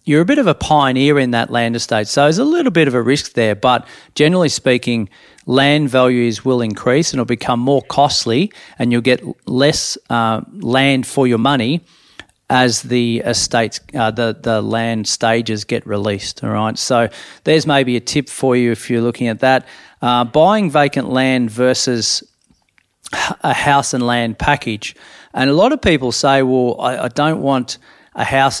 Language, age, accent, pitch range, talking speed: English, 40-59, Australian, 115-140 Hz, 185 wpm